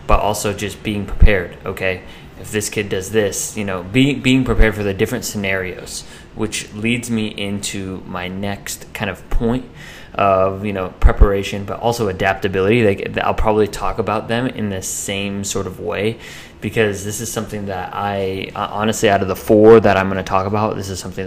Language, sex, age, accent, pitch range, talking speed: English, male, 20-39, American, 95-105 Hz, 190 wpm